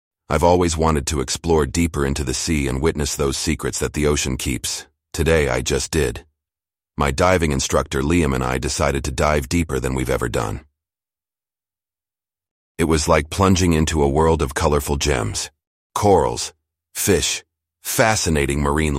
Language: English